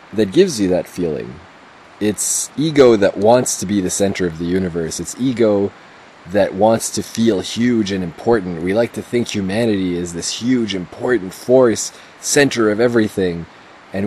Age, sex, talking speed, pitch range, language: 20-39, male, 165 wpm, 90-115 Hz, English